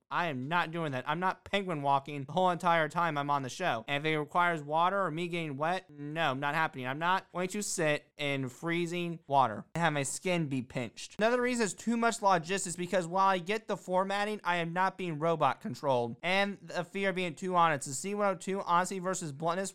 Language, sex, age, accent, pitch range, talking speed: English, male, 30-49, American, 150-185 Hz, 220 wpm